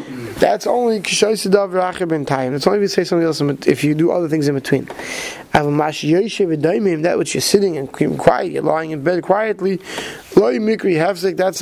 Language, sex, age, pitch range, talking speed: English, male, 20-39, 155-190 Hz, 155 wpm